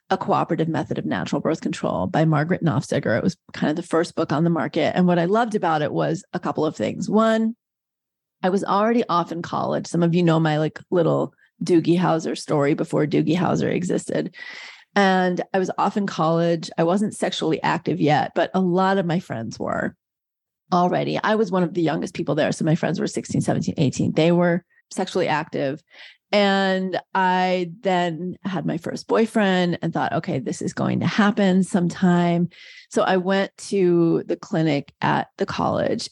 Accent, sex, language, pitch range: American, female, English, 165-195 Hz